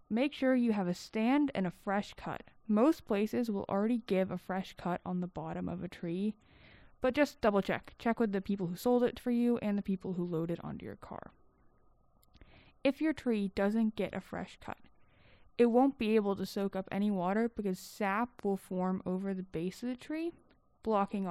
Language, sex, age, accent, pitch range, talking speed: English, female, 20-39, American, 185-225 Hz, 210 wpm